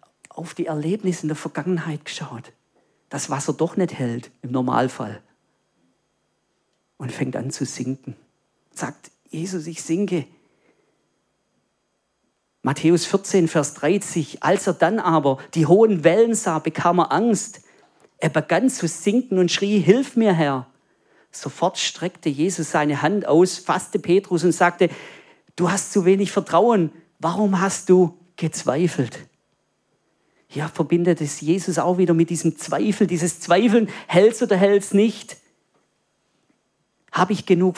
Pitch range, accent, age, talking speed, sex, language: 150-185 Hz, German, 40-59, 135 wpm, male, German